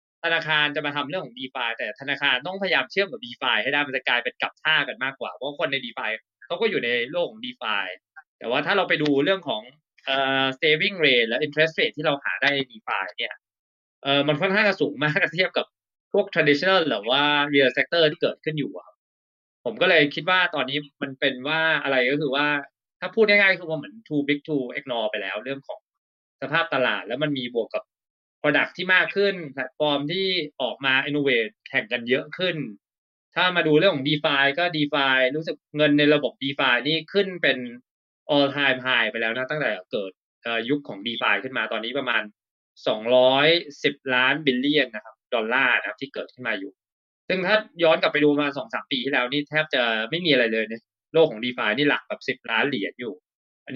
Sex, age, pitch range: male, 20-39, 130-160 Hz